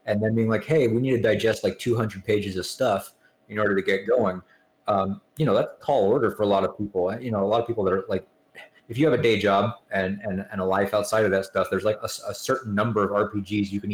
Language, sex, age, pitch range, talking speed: English, male, 20-39, 100-120 Hz, 275 wpm